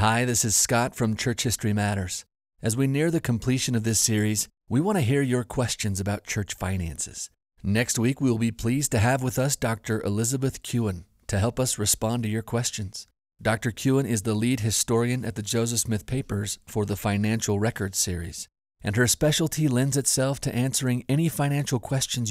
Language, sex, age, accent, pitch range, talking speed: English, male, 40-59, American, 105-125 Hz, 190 wpm